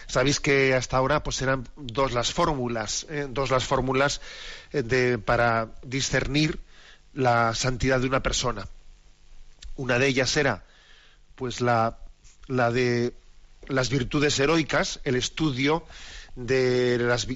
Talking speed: 120 wpm